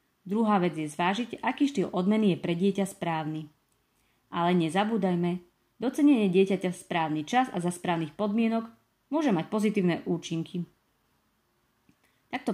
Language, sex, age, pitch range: Slovak, female, 30-49, 170-200 Hz